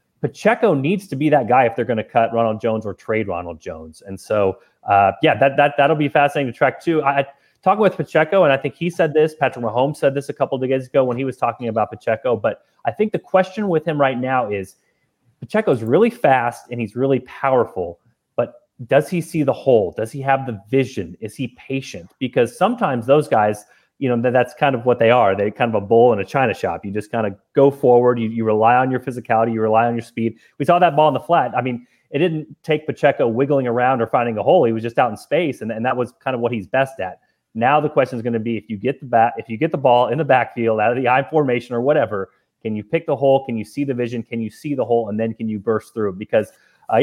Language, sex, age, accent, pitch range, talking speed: English, male, 30-49, American, 115-145 Hz, 265 wpm